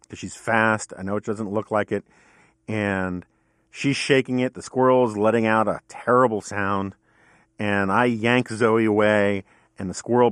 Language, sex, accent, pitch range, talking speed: English, male, American, 105-125 Hz, 165 wpm